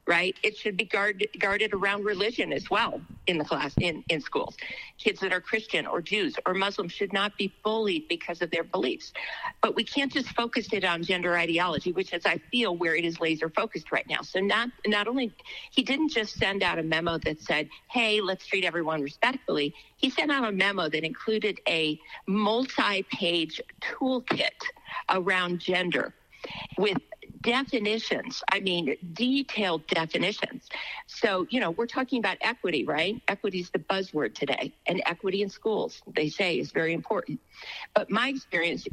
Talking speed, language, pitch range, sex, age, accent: 175 wpm, English, 170-230 Hz, female, 50-69, American